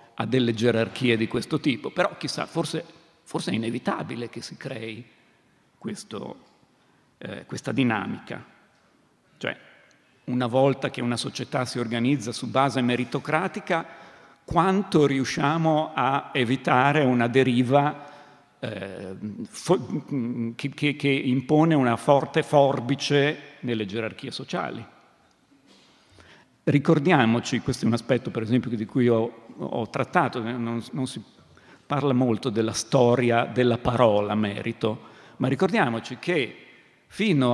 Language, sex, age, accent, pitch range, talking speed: Italian, male, 50-69, native, 115-145 Hz, 115 wpm